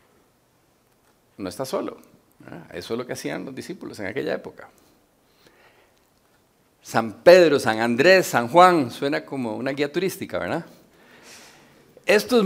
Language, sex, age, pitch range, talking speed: Spanish, male, 50-69, 115-175 Hz, 125 wpm